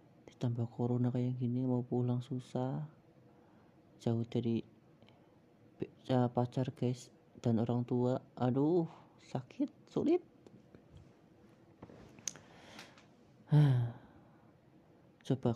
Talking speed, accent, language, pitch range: 70 wpm, native, Indonesian, 120-145 Hz